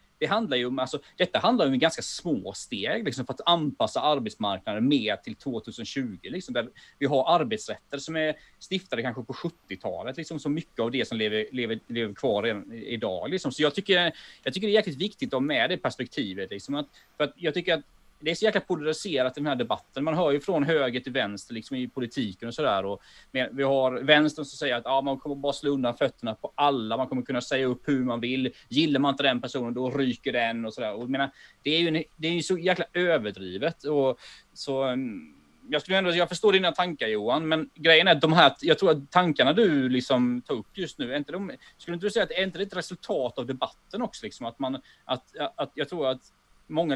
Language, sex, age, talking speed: Swedish, male, 30-49, 230 wpm